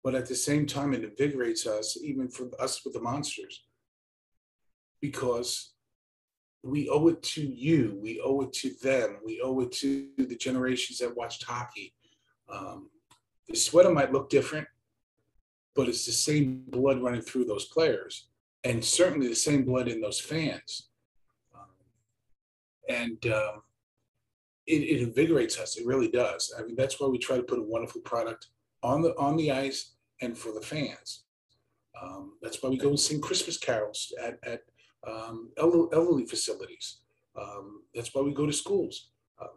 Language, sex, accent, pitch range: English, male, American, 120-165 Hz